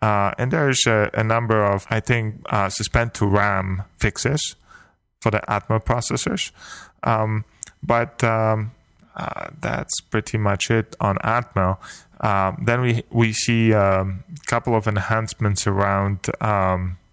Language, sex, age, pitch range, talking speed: English, male, 10-29, 100-115 Hz, 135 wpm